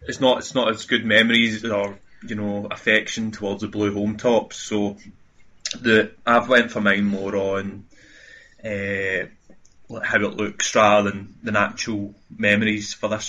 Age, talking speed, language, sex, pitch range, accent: 20-39, 180 wpm, English, male, 100-115 Hz, British